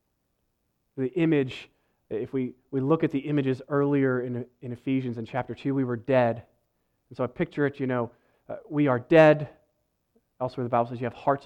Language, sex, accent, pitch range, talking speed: Finnish, male, American, 120-145 Hz, 195 wpm